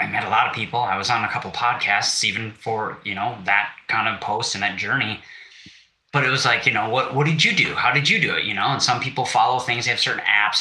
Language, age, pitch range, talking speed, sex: English, 20-39, 120-155 Hz, 290 wpm, male